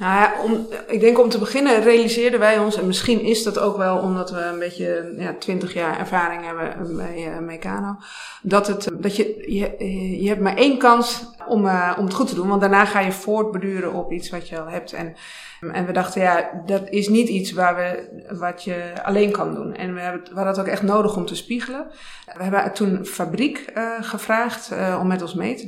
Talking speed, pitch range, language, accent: 220 wpm, 175-215 Hz, Dutch, Dutch